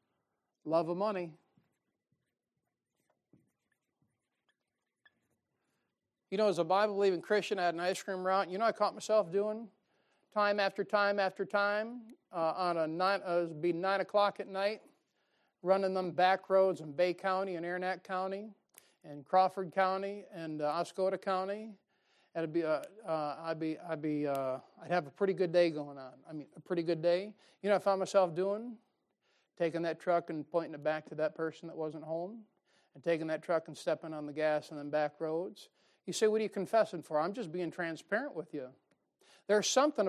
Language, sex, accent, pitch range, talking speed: English, male, American, 165-200 Hz, 185 wpm